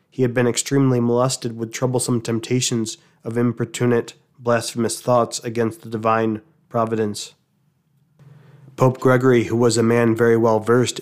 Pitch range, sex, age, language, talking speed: 115-130 Hz, male, 20-39, English, 135 wpm